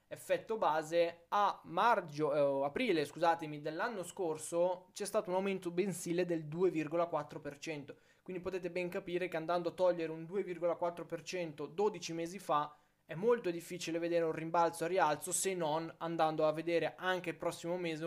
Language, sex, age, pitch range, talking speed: Italian, male, 20-39, 150-180 Hz, 155 wpm